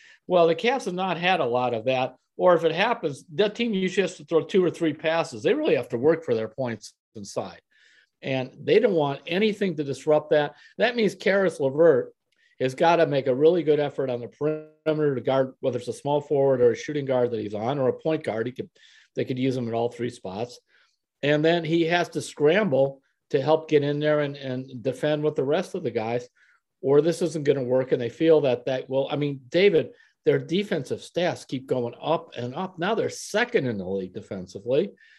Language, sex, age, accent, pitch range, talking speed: English, male, 50-69, American, 130-175 Hz, 230 wpm